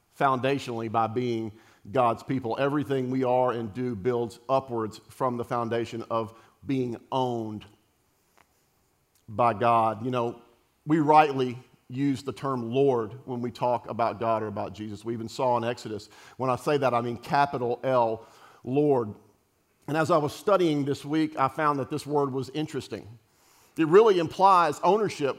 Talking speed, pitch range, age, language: 160 wpm, 120-155 Hz, 50-69, English